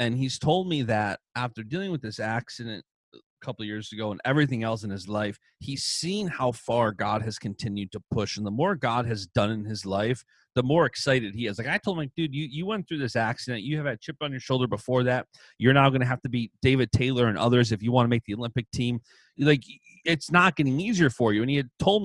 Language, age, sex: English, 30-49, male